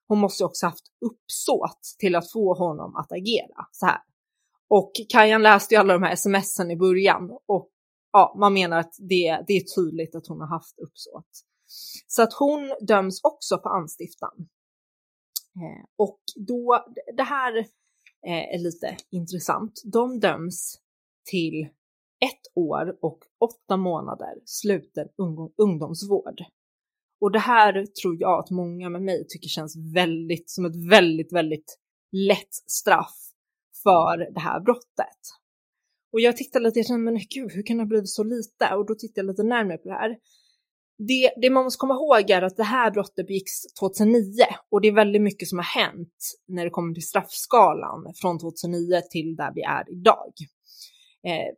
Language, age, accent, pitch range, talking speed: Swedish, 20-39, native, 175-225 Hz, 160 wpm